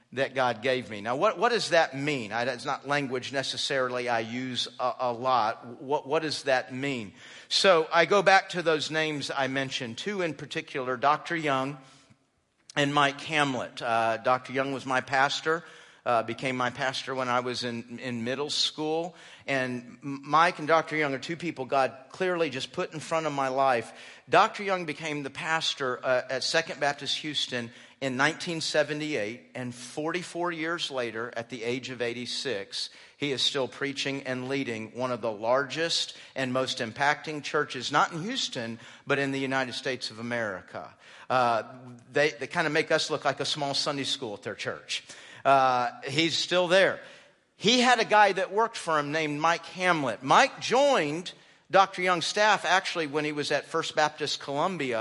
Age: 50-69